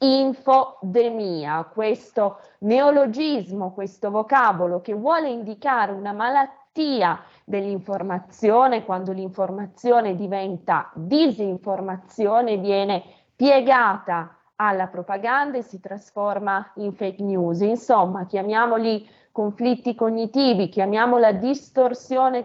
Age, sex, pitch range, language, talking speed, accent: 20-39, female, 190-240 Hz, Italian, 85 wpm, native